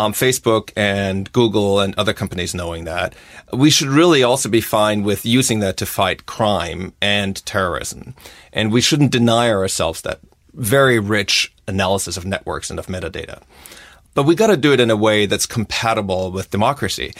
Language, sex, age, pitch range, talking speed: English, male, 30-49, 95-115 Hz, 175 wpm